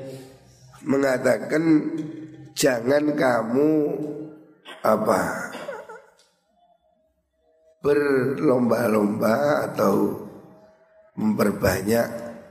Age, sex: 60-79, male